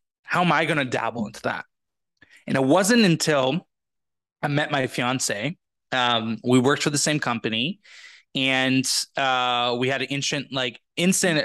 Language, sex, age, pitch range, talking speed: English, male, 20-39, 115-145 Hz, 160 wpm